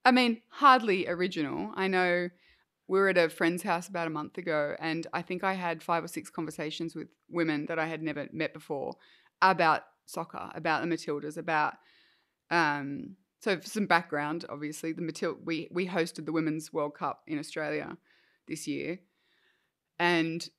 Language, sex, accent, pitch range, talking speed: English, female, Australian, 165-205 Hz, 170 wpm